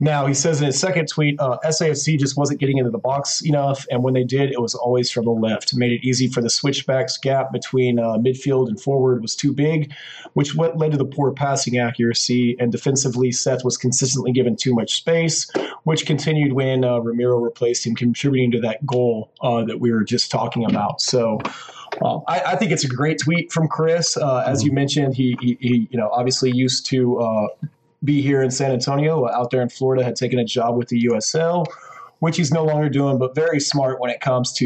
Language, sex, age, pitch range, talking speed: English, male, 30-49, 125-155 Hz, 220 wpm